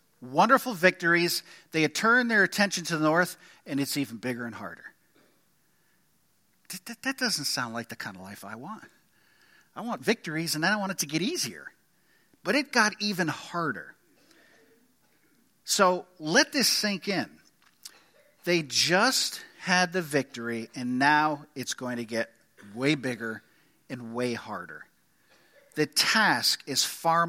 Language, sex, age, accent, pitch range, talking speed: English, male, 50-69, American, 130-185 Hz, 145 wpm